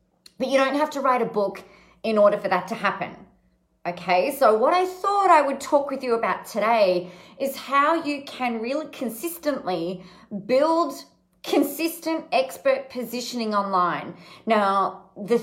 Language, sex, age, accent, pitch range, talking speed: English, female, 30-49, Australian, 185-265 Hz, 150 wpm